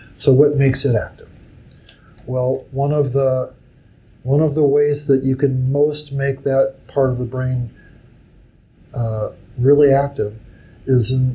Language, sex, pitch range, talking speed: English, male, 125-145 Hz, 150 wpm